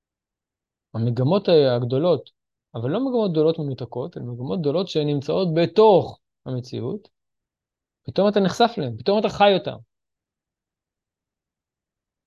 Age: 20-39